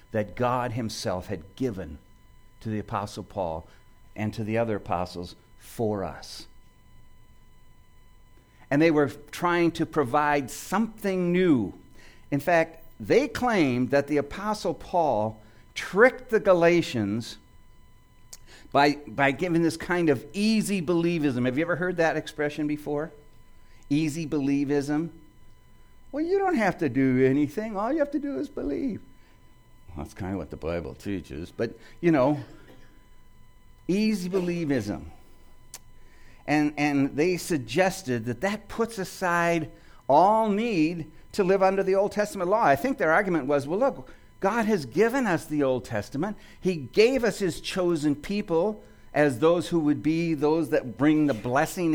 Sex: male